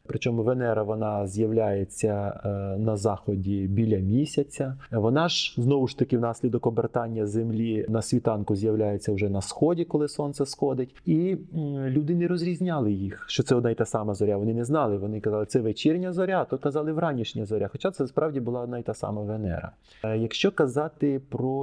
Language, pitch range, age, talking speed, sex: Ukrainian, 110-140 Hz, 30-49, 170 wpm, male